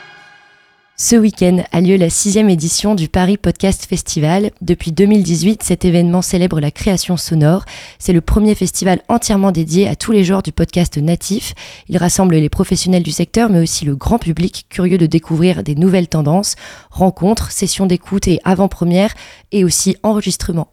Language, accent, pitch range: French, Belgian, 165-195 Hz